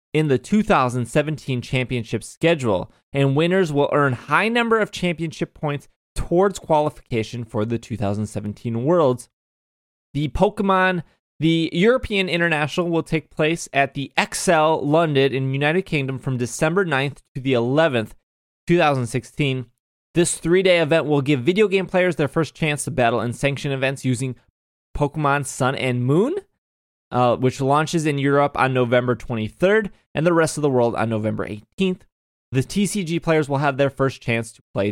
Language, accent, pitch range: English, American, 125-170 Hz